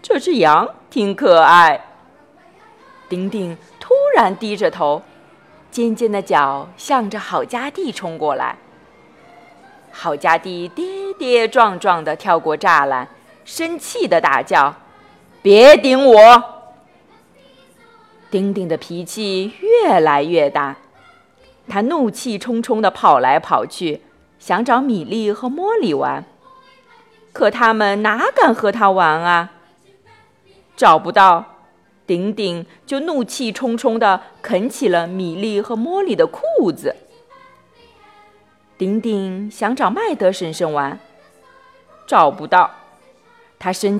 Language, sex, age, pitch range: Chinese, female, 30-49, 190-275 Hz